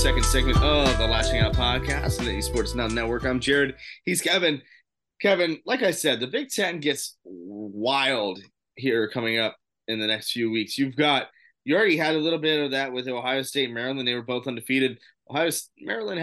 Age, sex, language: 20-39, male, English